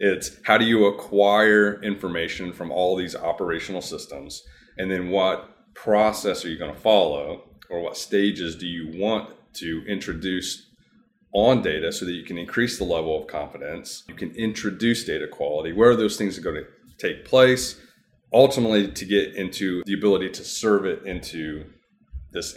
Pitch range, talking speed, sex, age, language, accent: 90-110 Hz, 170 wpm, male, 30-49, English, American